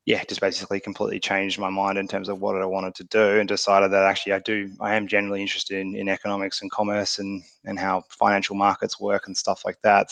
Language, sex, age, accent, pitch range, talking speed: English, male, 20-39, Australian, 100-110 Hz, 235 wpm